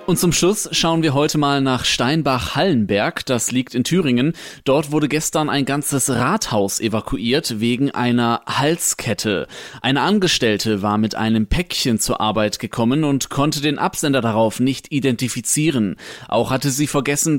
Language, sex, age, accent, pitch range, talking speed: German, male, 30-49, German, 125-165 Hz, 150 wpm